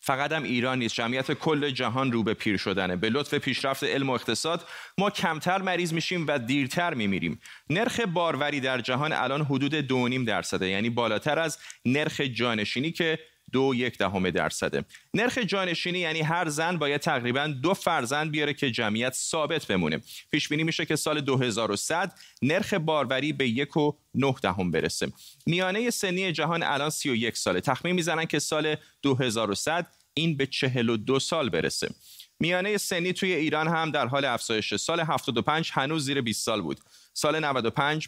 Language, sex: Persian, male